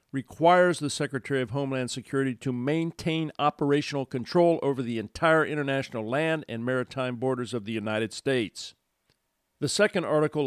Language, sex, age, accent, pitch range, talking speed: English, male, 50-69, American, 115-140 Hz, 145 wpm